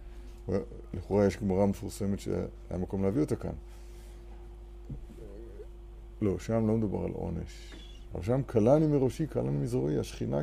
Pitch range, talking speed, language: 95-120 Hz, 125 wpm, Hebrew